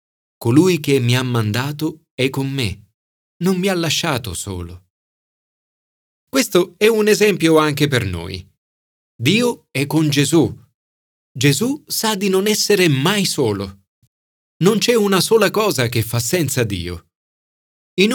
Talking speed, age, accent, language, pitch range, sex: 135 wpm, 40-59, native, Italian, 110-170 Hz, male